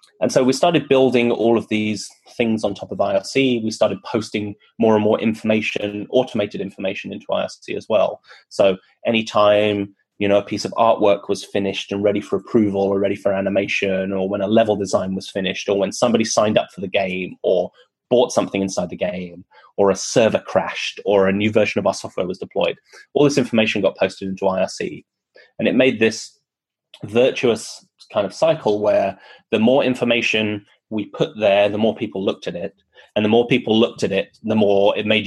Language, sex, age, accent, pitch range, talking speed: German, male, 20-39, British, 100-115 Hz, 200 wpm